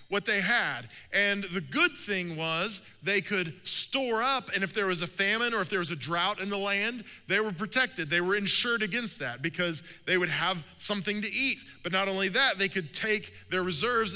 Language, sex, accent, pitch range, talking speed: English, male, American, 155-200 Hz, 215 wpm